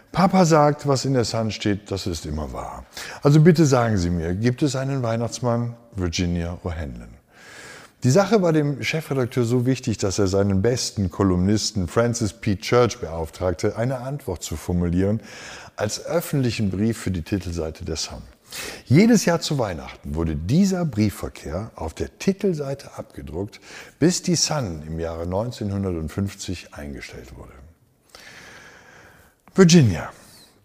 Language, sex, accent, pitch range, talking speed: German, male, German, 90-130 Hz, 135 wpm